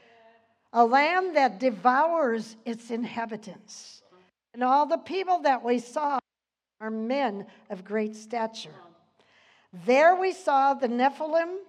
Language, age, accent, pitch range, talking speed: English, 60-79, American, 215-275 Hz, 120 wpm